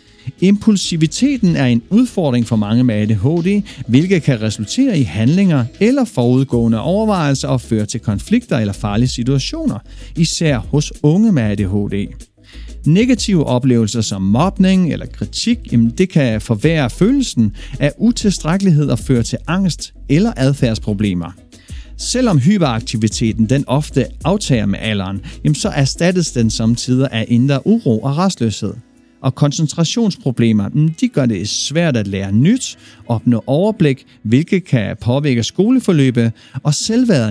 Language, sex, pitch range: Danish, male, 115-170 Hz